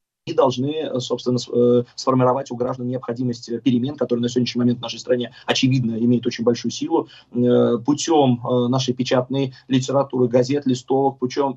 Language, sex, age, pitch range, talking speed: Russian, male, 20-39, 120-145 Hz, 140 wpm